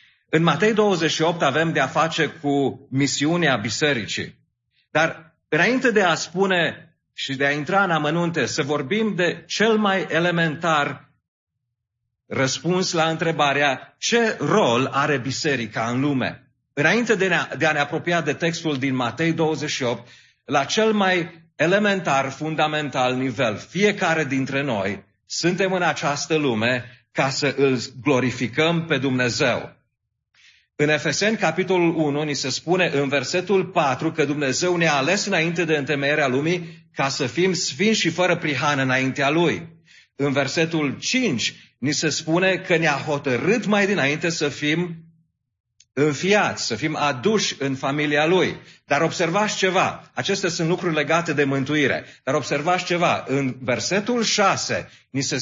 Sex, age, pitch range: male, 40-59, 135-175 Hz